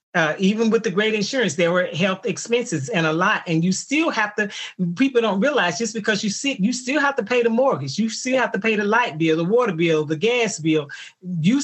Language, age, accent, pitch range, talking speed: English, 40-59, American, 160-220 Hz, 240 wpm